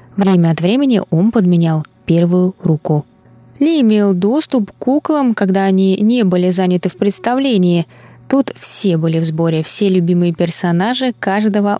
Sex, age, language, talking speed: female, 20-39, Russian, 140 wpm